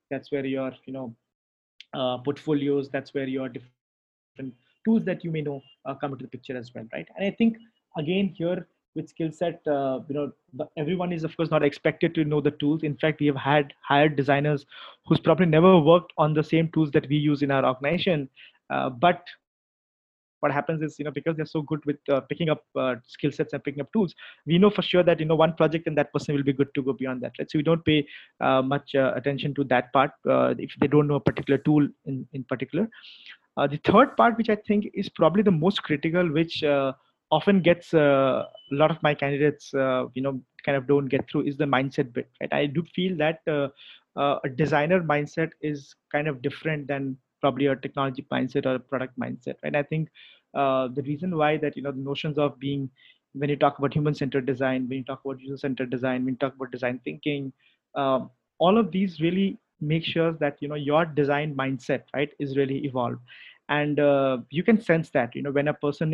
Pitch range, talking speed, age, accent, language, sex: 135-160 Hz, 220 wpm, 20-39, Indian, English, male